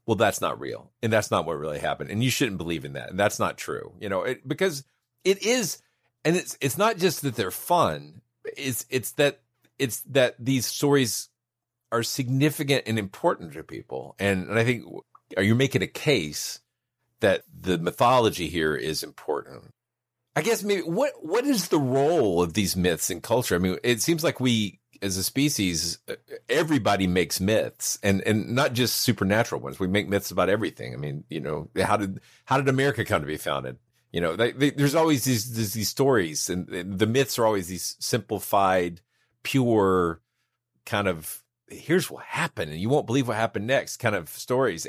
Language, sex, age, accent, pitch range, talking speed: English, male, 40-59, American, 100-140 Hz, 195 wpm